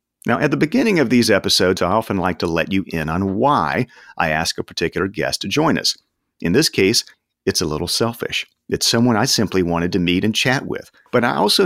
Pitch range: 90-115 Hz